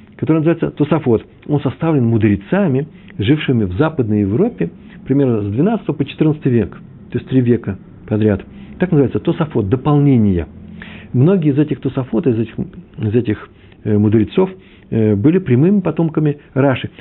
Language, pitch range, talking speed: Russian, 105-150 Hz, 130 wpm